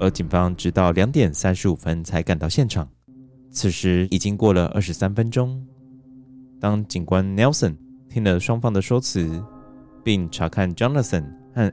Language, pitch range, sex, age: Chinese, 90-130 Hz, male, 20-39